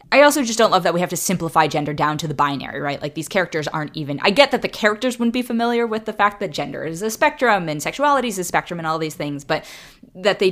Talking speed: 280 wpm